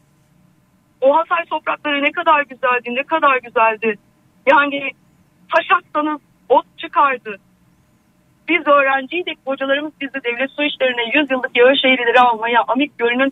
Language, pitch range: Turkish, 245-315 Hz